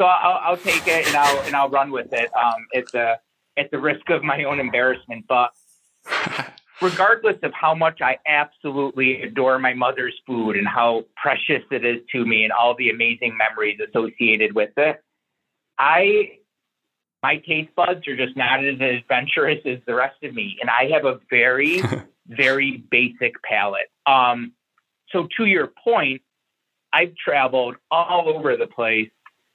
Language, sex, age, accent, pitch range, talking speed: English, male, 30-49, American, 125-155 Hz, 165 wpm